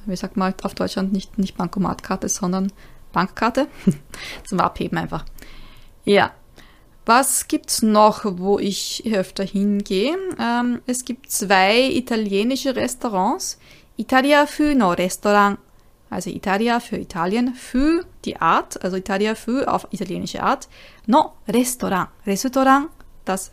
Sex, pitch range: female, 195-250 Hz